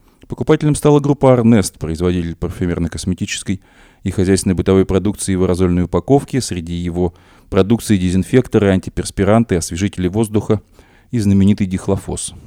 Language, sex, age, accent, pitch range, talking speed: Russian, male, 30-49, native, 90-115 Hz, 110 wpm